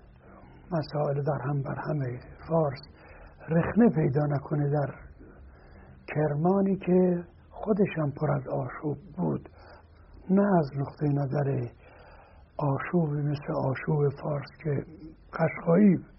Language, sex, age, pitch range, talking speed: Persian, male, 60-79, 100-165 Hz, 100 wpm